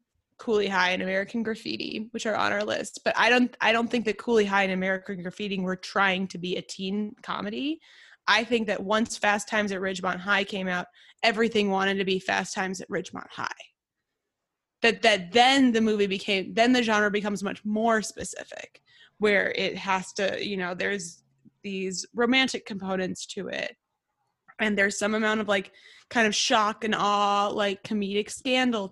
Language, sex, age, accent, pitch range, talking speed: English, female, 20-39, American, 195-225 Hz, 185 wpm